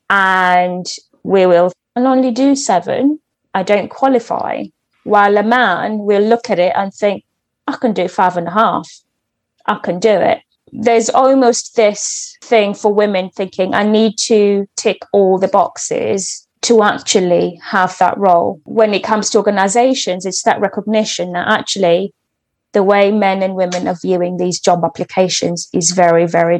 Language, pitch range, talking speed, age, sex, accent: English, 180-225 Hz, 160 wpm, 20-39, female, British